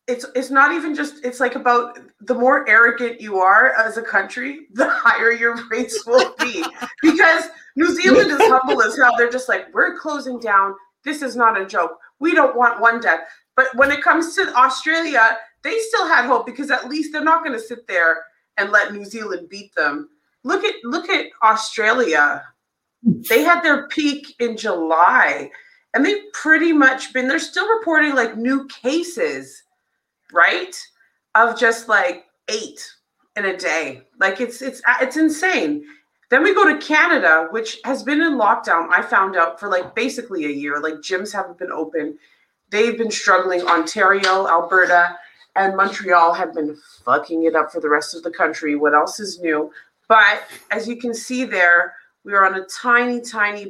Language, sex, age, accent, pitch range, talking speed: English, female, 30-49, American, 190-295 Hz, 180 wpm